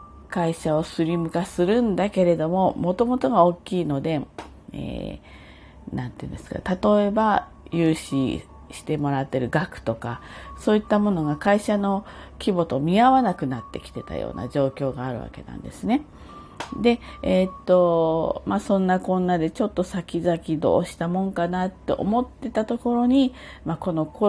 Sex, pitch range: female, 140-195 Hz